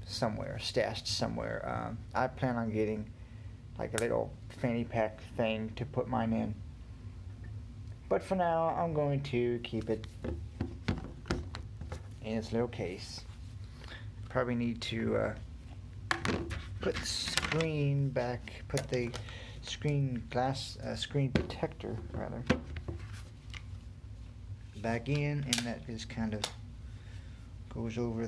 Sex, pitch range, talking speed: male, 105-120 Hz, 110 wpm